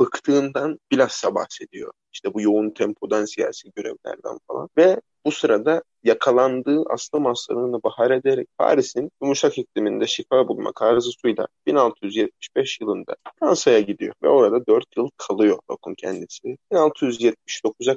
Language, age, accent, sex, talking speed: Turkish, 30-49, native, male, 120 wpm